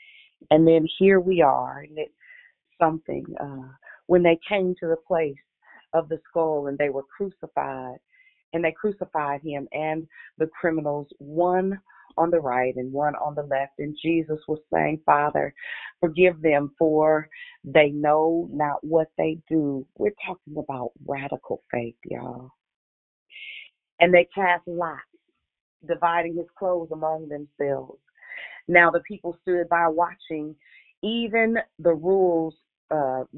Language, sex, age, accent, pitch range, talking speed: English, female, 40-59, American, 145-185 Hz, 140 wpm